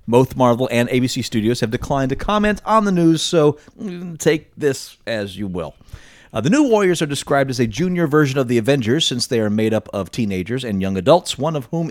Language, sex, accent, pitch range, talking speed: English, male, American, 105-155 Hz, 220 wpm